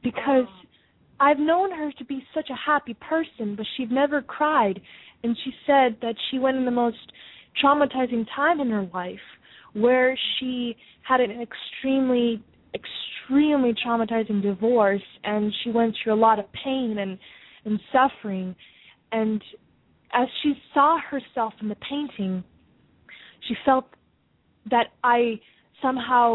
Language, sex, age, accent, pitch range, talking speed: English, female, 20-39, American, 220-270 Hz, 135 wpm